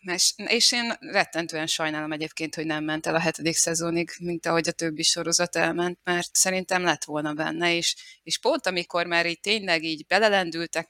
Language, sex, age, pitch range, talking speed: Hungarian, female, 20-39, 155-180 Hz, 175 wpm